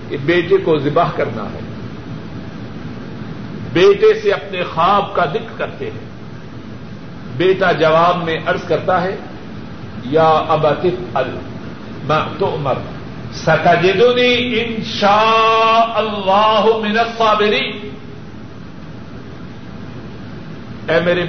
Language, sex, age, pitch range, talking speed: Urdu, male, 50-69, 160-215 Hz, 90 wpm